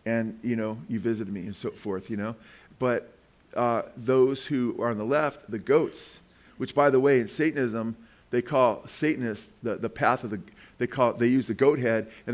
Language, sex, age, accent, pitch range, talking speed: English, male, 40-59, American, 105-125 Hz, 215 wpm